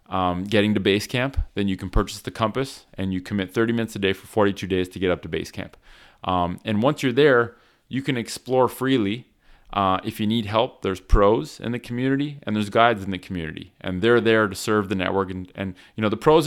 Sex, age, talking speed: male, 30-49, 235 wpm